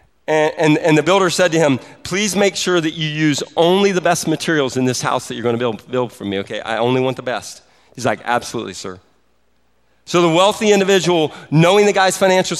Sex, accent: male, American